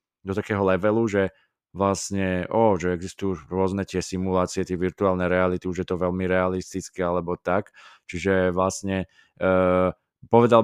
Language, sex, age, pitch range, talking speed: Slovak, male, 20-39, 90-105 Hz, 135 wpm